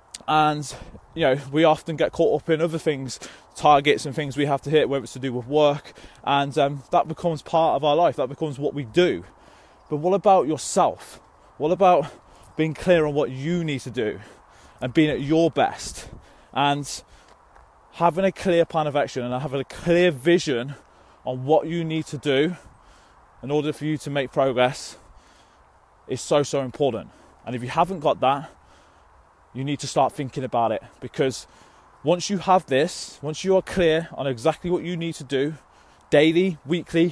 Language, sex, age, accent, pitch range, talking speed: English, male, 20-39, British, 135-165 Hz, 190 wpm